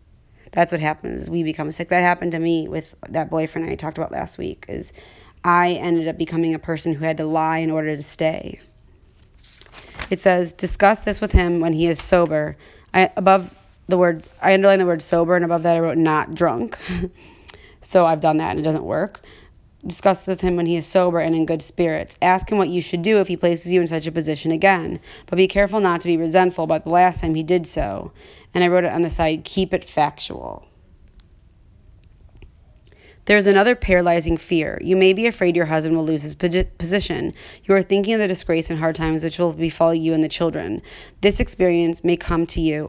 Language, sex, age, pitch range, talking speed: English, female, 30-49, 160-185 Hz, 215 wpm